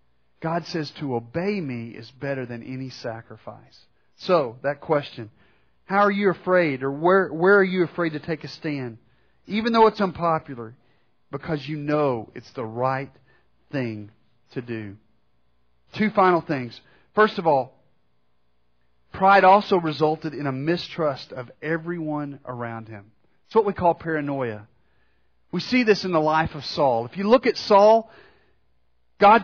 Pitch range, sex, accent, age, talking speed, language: 120-190 Hz, male, American, 40-59, 155 wpm, English